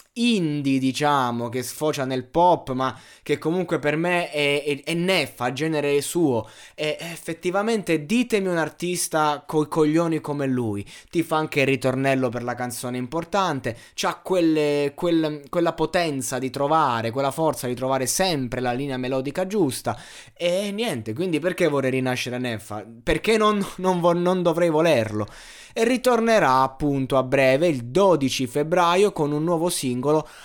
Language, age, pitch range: Italian, 20-39, 125-170 Hz